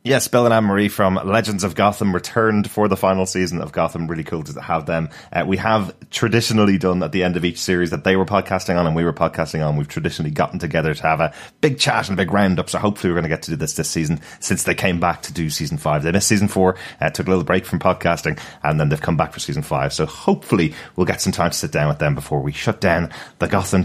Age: 30-49